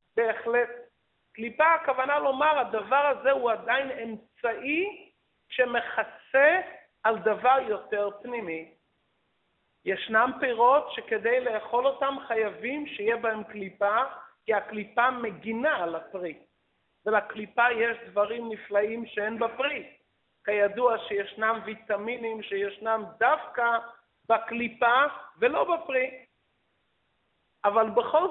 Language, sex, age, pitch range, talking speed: Hebrew, male, 50-69, 215-265 Hz, 95 wpm